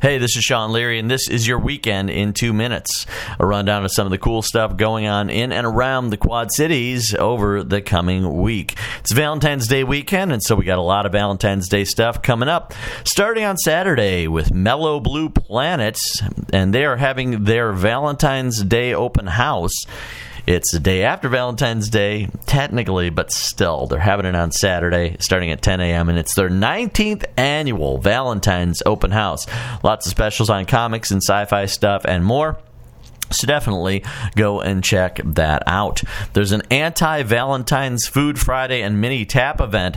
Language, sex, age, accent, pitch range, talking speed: English, male, 40-59, American, 95-120 Hz, 175 wpm